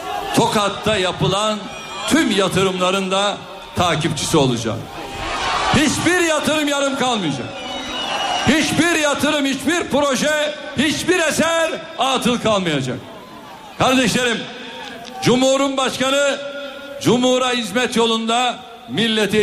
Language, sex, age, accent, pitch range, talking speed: Turkish, male, 60-79, native, 205-290 Hz, 80 wpm